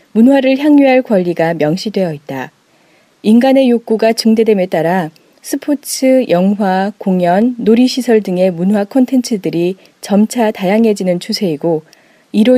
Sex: female